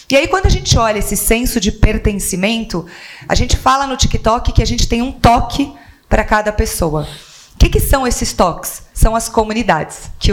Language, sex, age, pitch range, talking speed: Portuguese, female, 30-49, 195-240 Hz, 190 wpm